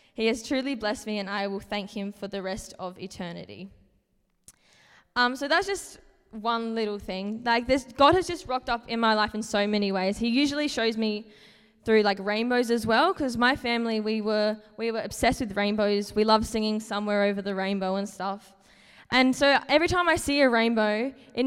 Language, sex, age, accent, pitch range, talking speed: English, female, 10-29, Australian, 200-245 Hz, 205 wpm